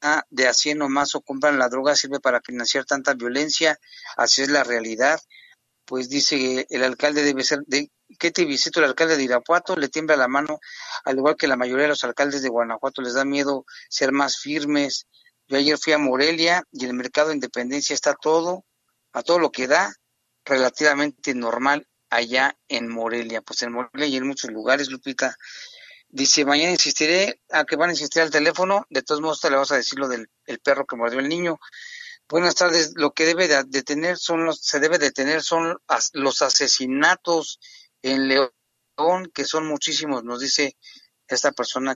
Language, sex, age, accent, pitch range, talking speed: Spanish, male, 40-59, Mexican, 130-160 Hz, 190 wpm